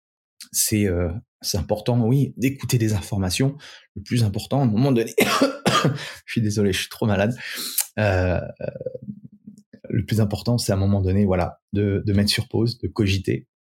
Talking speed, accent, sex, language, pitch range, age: 170 wpm, French, male, French, 95-110 Hz, 20-39